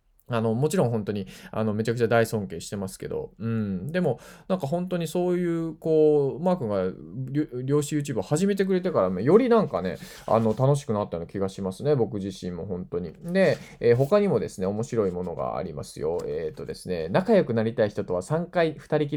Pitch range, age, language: 105-170 Hz, 20-39, Japanese